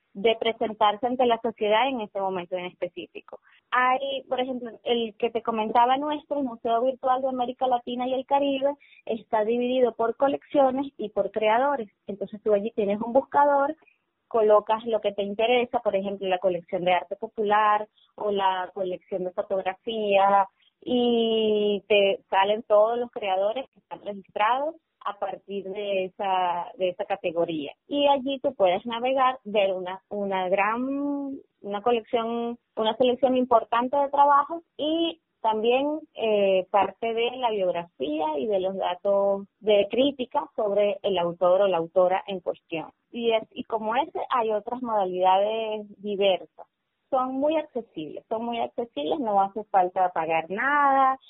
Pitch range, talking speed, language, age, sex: 195-250 Hz, 150 wpm, Spanish, 20-39, female